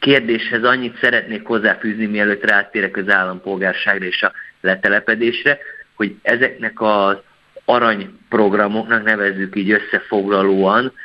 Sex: male